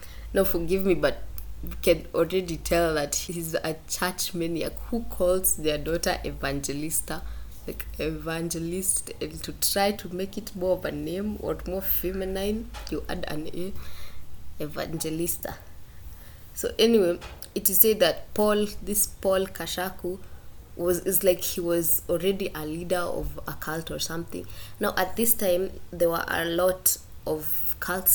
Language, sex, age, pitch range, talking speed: English, female, 20-39, 155-185 Hz, 150 wpm